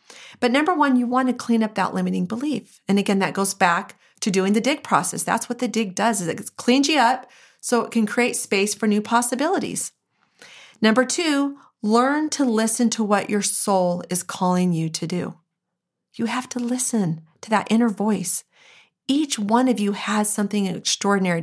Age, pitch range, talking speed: 40-59, 195-255 Hz, 190 wpm